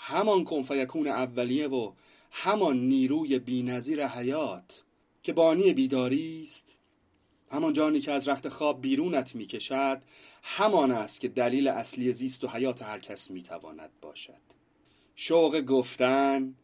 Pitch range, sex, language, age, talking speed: 130-170 Hz, male, Persian, 30-49, 125 wpm